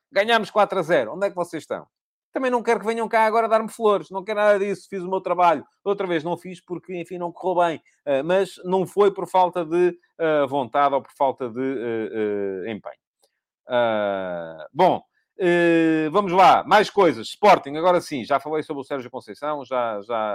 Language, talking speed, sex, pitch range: English, 185 wpm, male, 125-185 Hz